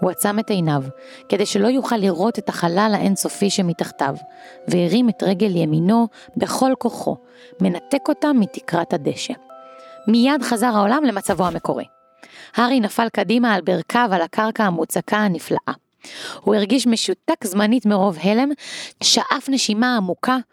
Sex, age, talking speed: female, 30-49, 130 wpm